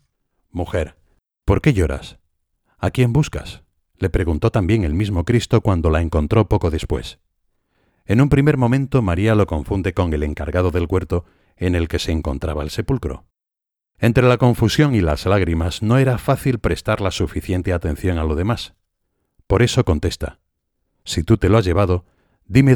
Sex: male